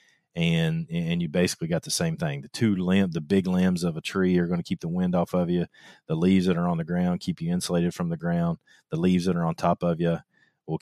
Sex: male